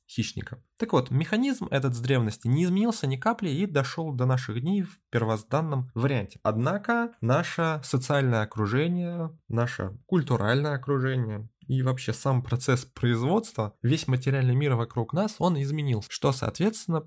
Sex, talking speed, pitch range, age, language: male, 135 wpm, 115-160 Hz, 20-39, Russian